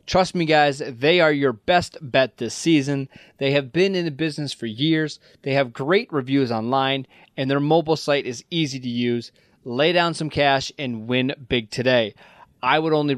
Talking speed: 190 wpm